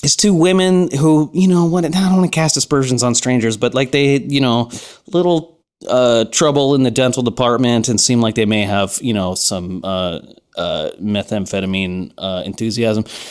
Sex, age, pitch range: male, 30-49, 120-175 Hz